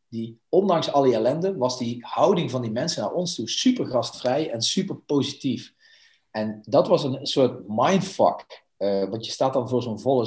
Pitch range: 115-145 Hz